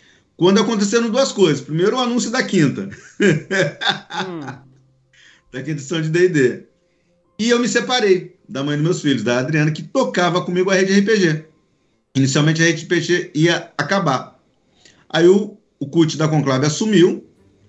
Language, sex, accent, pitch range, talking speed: Portuguese, male, Brazilian, 135-190 Hz, 145 wpm